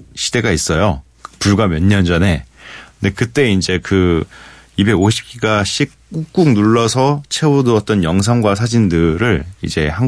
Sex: male